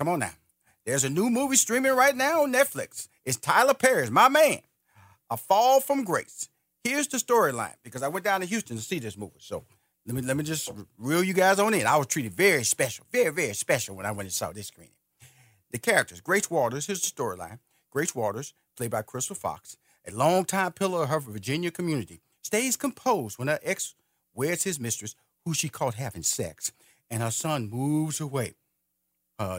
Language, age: English, 40-59